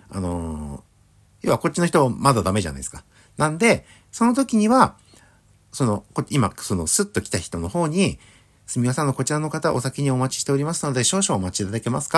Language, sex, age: Japanese, male, 60-79